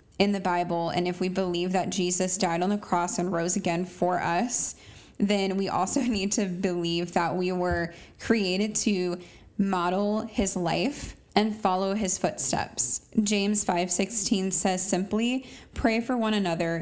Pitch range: 180-210 Hz